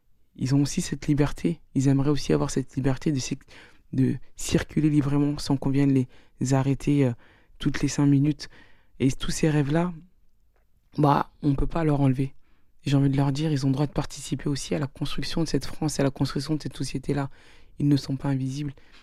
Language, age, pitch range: French, 20-39, 130-145 Hz